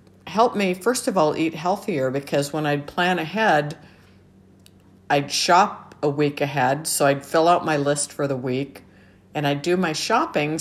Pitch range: 140-170 Hz